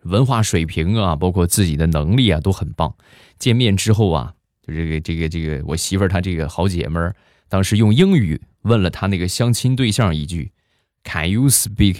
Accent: native